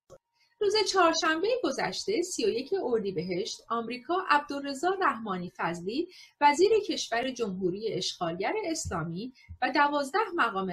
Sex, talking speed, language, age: female, 105 wpm, Persian, 30-49